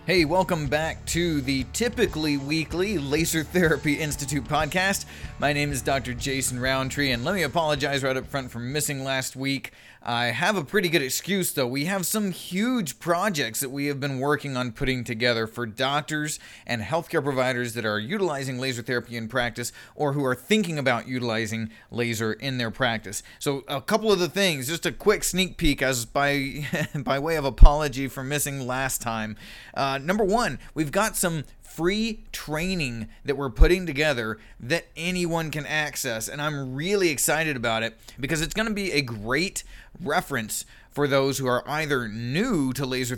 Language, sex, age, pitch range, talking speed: English, male, 30-49, 125-160 Hz, 175 wpm